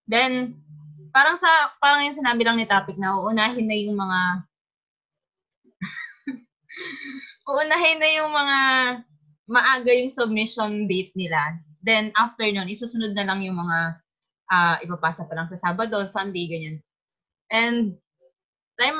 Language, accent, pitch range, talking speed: Filipino, native, 190-250 Hz, 130 wpm